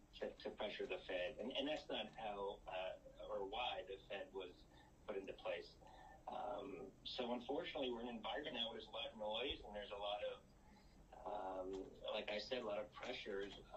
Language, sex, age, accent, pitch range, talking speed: English, male, 40-59, American, 95-105 Hz, 200 wpm